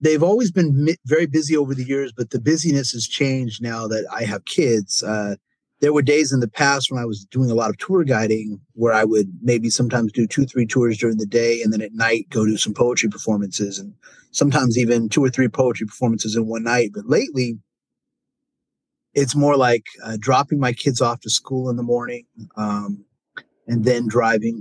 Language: English